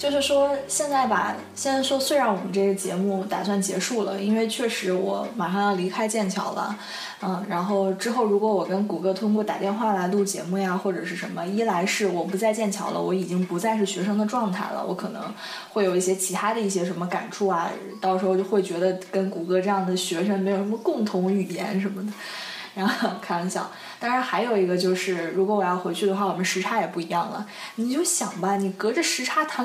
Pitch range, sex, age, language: 185-215 Hz, female, 20-39, Chinese